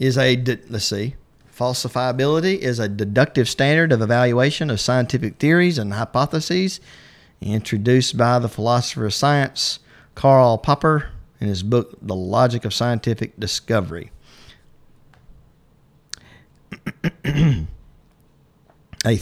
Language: English